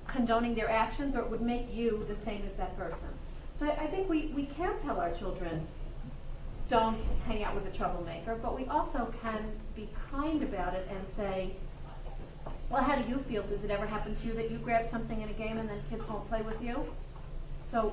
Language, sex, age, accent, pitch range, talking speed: English, female, 40-59, American, 210-255 Hz, 215 wpm